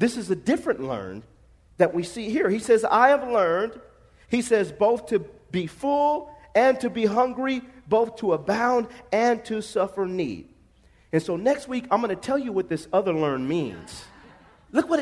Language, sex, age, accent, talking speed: English, male, 40-59, American, 190 wpm